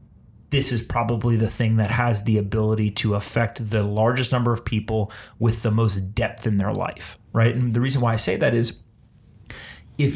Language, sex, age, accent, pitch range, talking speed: English, male, 30-49, American, 105-120 Hz, 195 wpm